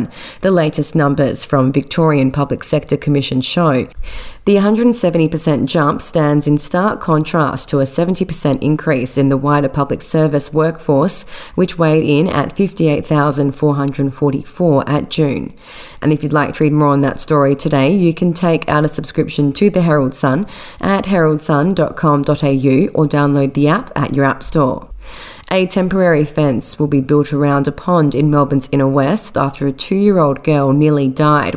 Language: English